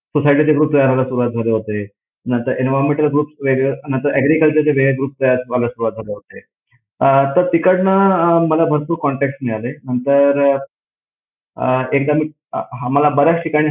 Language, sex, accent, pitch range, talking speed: Marathi, male, native, 120-165 Hz, 80 wpm